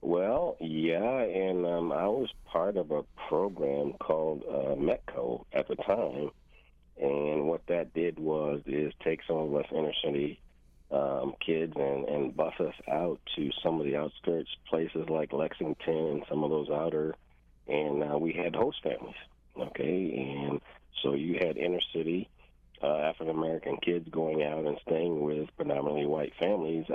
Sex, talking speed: male, 160 wpm